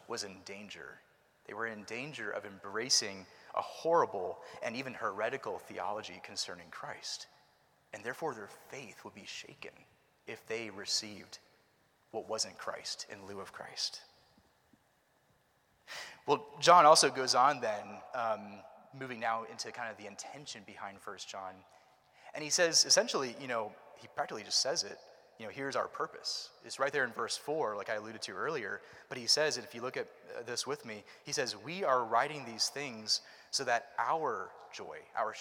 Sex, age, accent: male, 30-49, American